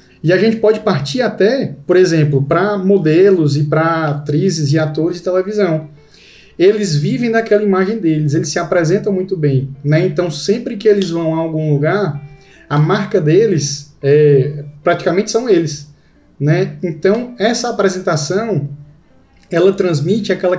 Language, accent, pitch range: Portuguese, Brazilian, 150-195 Hz